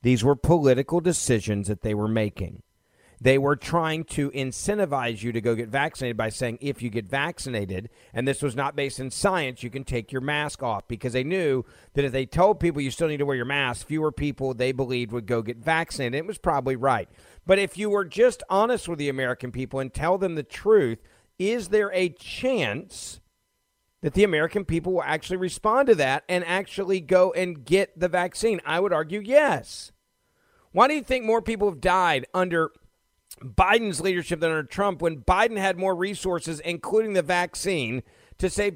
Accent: American